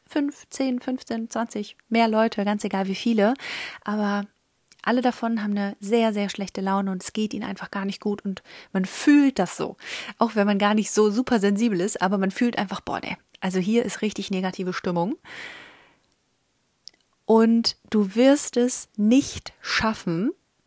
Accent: German